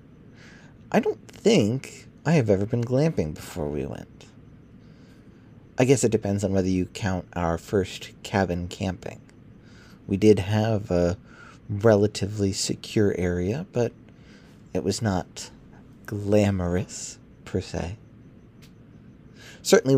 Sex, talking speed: male, 115 wpm